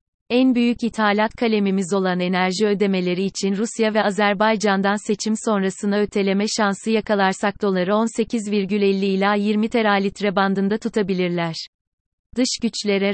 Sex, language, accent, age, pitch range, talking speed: female, Turkish, native, 30-49, 195-225 Hz, 120 wpm